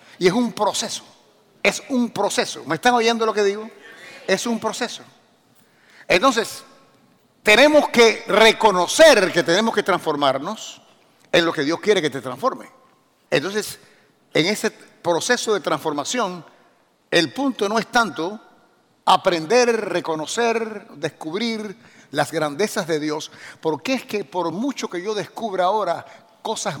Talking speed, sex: 135 wpm, male